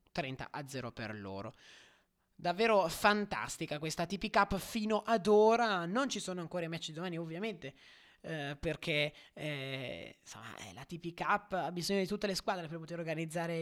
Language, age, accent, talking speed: Italian, 20-39, native, 165 wpm